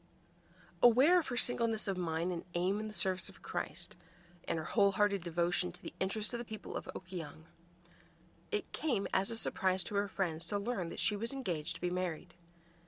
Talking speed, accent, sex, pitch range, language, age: 195 wpm, American, female, 170-225 Hz, English, 30-49